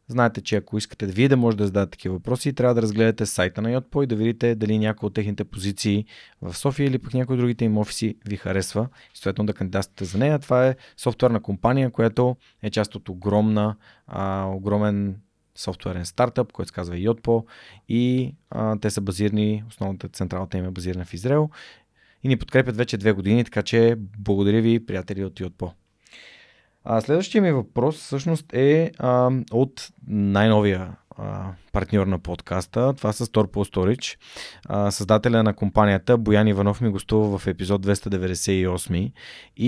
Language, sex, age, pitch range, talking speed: Bulgarian, male, 20-39, 100-120 Hz, 165 wpm